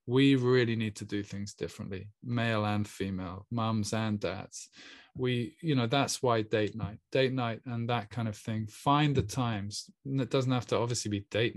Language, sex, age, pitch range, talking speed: English, male, 20-39, 110-130 Hz, 190 wpm